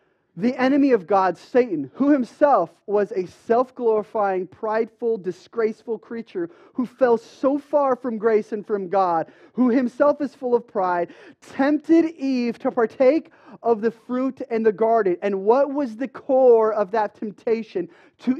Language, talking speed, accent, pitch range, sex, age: English, 155 wpm, American, 180-275 Hz, male, 30-49